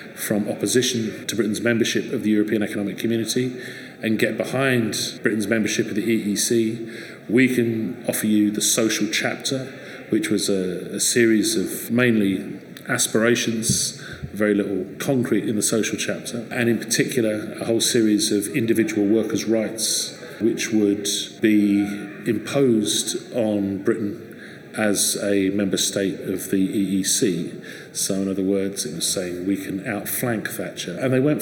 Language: English